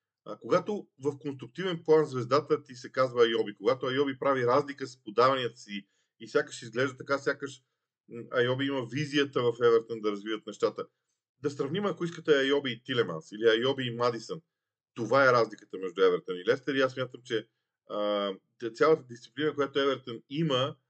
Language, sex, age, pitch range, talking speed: Bulgarian, male, 40-59, 125-155 Hz, 165 wpm